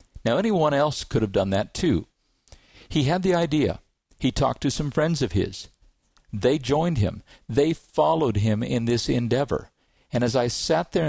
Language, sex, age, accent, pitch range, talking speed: English, male, 50-69, American, 115-165 Hz, 180 wpm